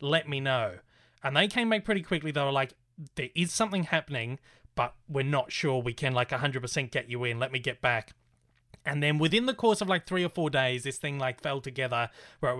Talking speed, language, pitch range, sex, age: 235 wpm, English, 125-150 Hz, male, 30-49